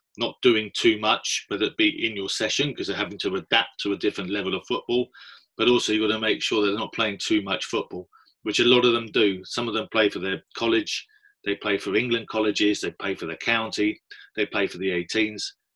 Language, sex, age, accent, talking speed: English, male, 30-49, British, 240 wpm